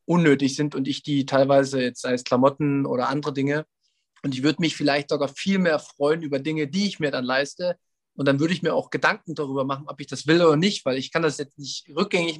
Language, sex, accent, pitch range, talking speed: German, male, German, 145-195 Hz, 240 wpm